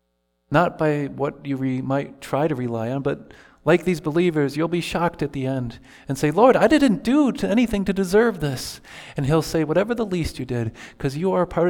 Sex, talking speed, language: male, 225 wpm, English